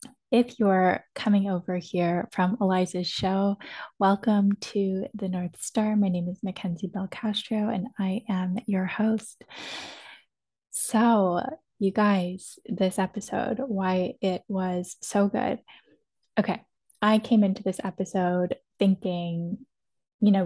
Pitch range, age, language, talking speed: 180-210 Hz, 10-29, English, 125 wpm